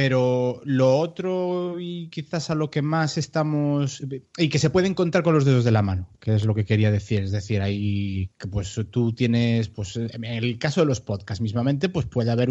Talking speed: 210 wpm